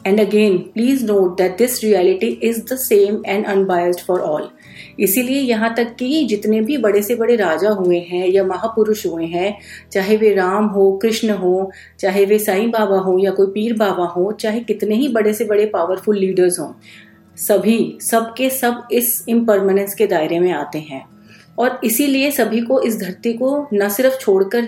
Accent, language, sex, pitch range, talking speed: native, Hindi, female, 190-235 Hz, 180 wpm